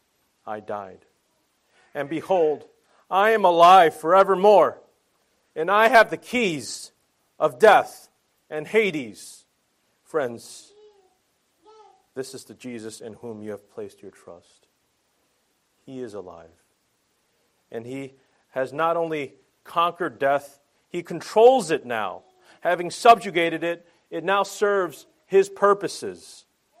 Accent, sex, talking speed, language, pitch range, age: American, male, 115 wpm, English, 125-185 Hz, 40-59